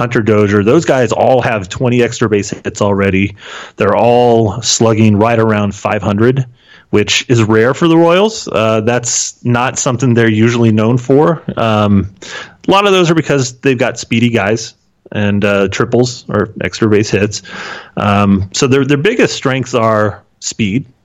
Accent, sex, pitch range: American, male, 105-125 Hz